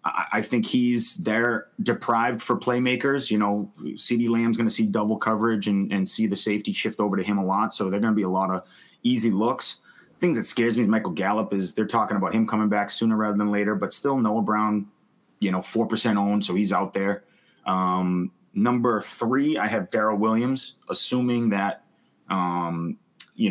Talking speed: 200 wpm